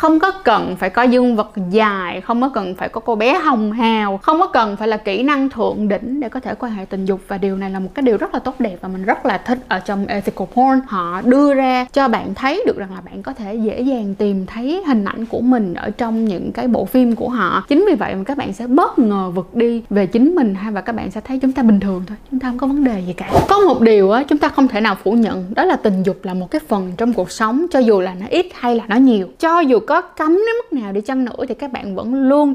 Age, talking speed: 10-29, 295 wpm